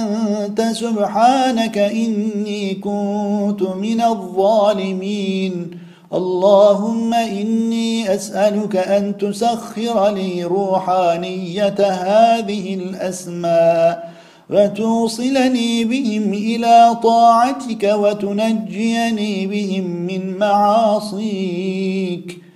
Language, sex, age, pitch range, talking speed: Turkish, male, 50-69, 185-215 Hz, 60 wpm